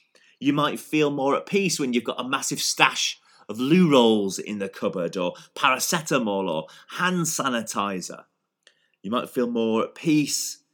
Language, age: English, 30-49